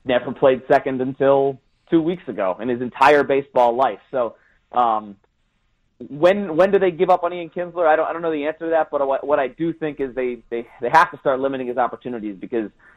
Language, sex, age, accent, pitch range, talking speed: English, male, 30-49, American, 115-145 Hz, 220 wpm